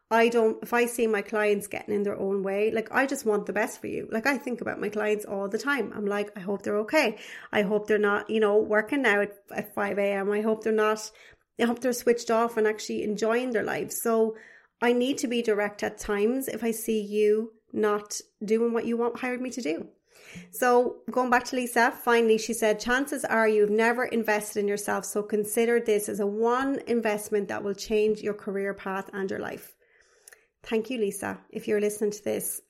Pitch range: 205-235 Hz